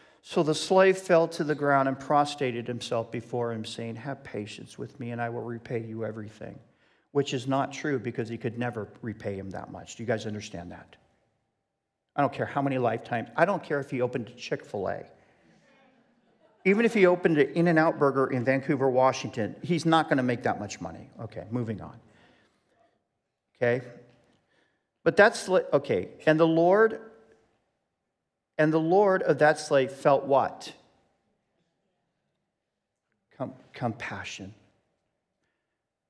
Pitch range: 115-150 Hz